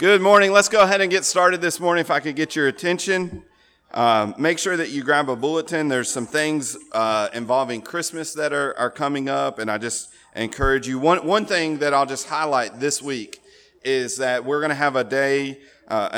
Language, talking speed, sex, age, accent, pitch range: English, 215 wpm, male, 30-49, American, 110-145 Hz